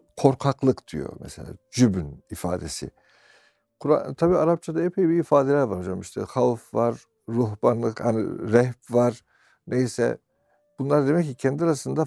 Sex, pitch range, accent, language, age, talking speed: male, 100-145 Hz, native, Turkish, 60-79, 130 wpm